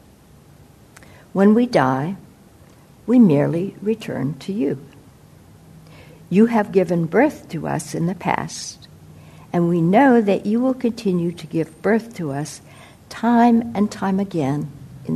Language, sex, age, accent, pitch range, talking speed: English, female, 60-79, American, 145-220 Hz, 135 wpm